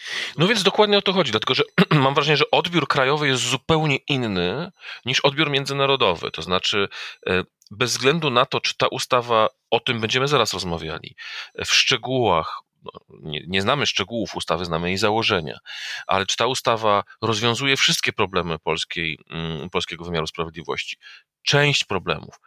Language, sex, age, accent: Polish, male, 40-59, native